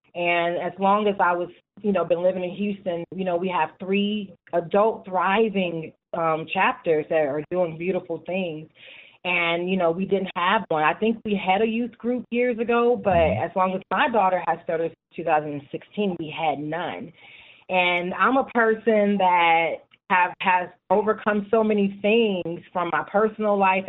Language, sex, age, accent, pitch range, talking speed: English, female, 30-49, American, 170-205 Hz, 175 wpm